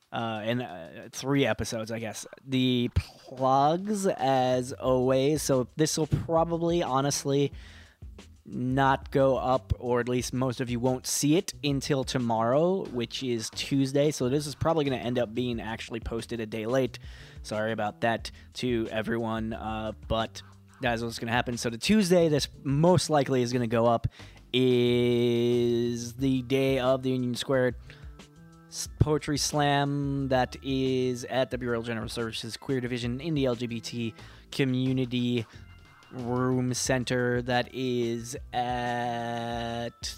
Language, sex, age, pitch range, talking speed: English, male, 20-39, 115-135 Hz, 145 wpm